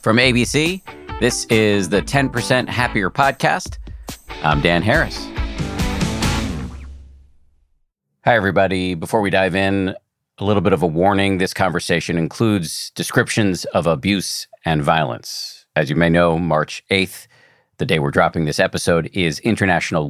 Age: 40-59